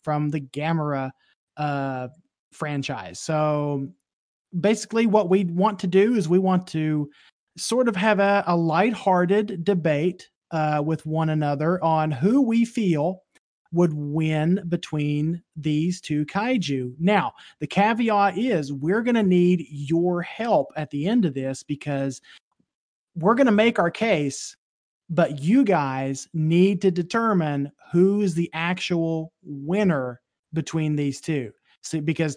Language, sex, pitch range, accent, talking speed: English, male, 150-190 Hz, American, 135 wpm